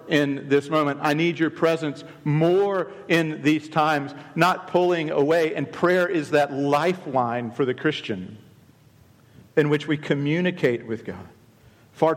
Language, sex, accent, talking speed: English, male, American, 145 wpm